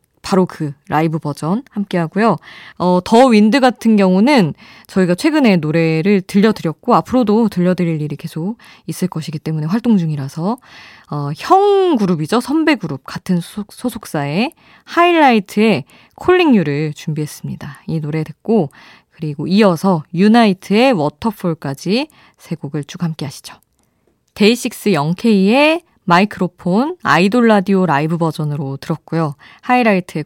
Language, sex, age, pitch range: Korean, female, 20-39, 155-220 Hz